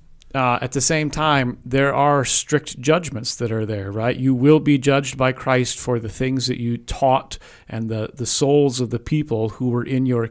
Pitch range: 115-140 Hz